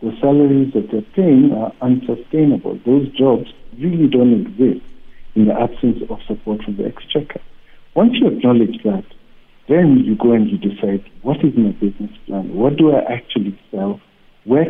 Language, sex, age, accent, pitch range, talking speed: English, male, 60-79, South African, 110-140 Hz, 165 wpm